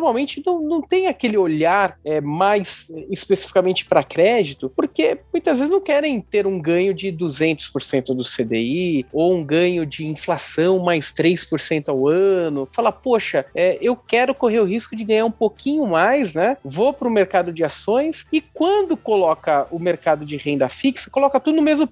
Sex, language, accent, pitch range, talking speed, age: male, Portuguese, Brazilian, 160-250 Hz, 170 wpm, 30-49